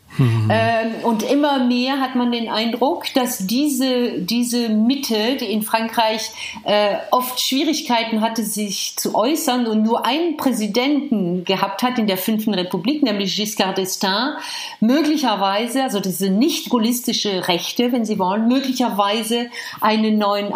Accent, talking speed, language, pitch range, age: German, 130 wpm, German, 185-245 Hz, 50-69